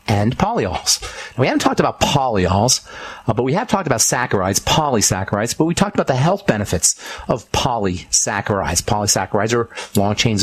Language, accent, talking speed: English, American, 160 wpm